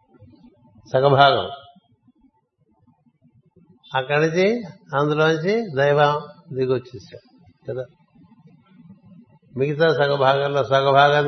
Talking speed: 60 wpm